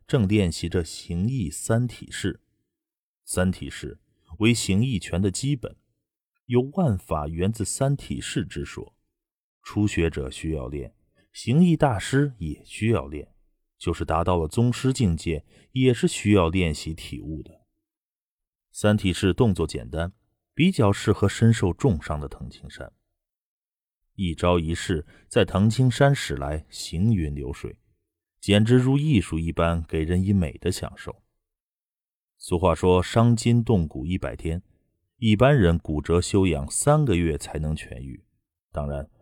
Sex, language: male, Chinese